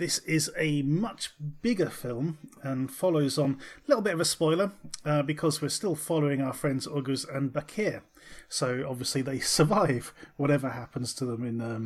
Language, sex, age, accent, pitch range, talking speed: English, male, 30-49, British, 125-155 Hz, 175 wpm